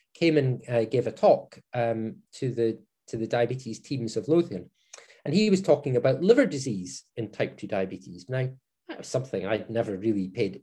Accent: British